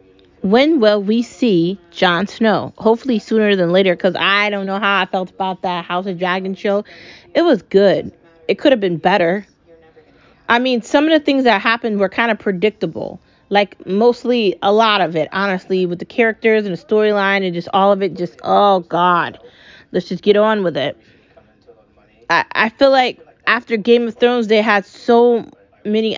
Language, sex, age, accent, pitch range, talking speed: English, female, 20-39, American, 180-220 Hz, 190 wpm